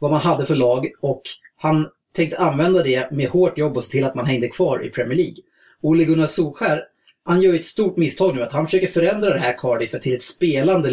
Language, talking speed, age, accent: Swedish, 225 wpm, 30-49, Norwegian